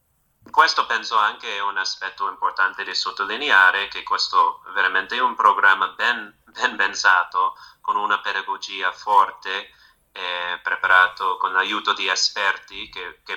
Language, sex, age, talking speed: Italian, male, 30-49, 140 wpm